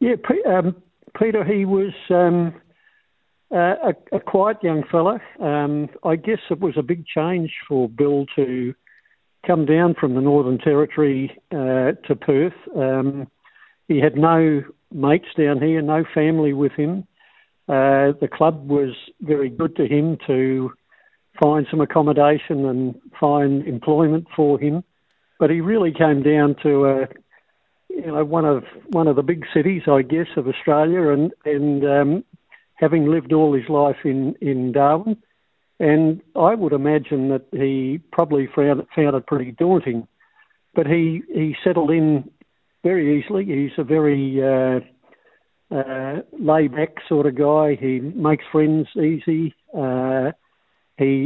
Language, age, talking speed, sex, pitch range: English, 60-79, 145 wpm, male, 140-165 Hz